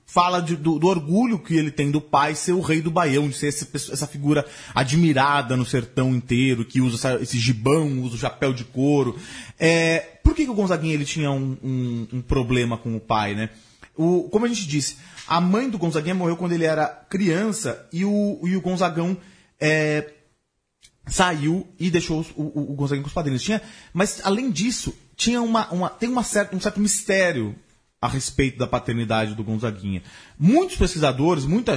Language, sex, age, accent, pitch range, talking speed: Portuguese, male, 30-49, Brazilian, 125-180 Hz, 165 wpm